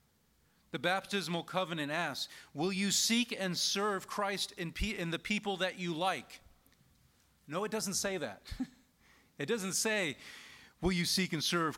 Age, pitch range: 40-59, 145-185 Hz